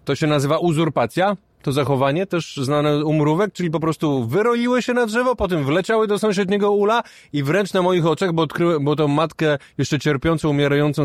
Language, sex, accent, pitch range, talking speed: Polish, male, native, 135-170 Hz, 180 wpm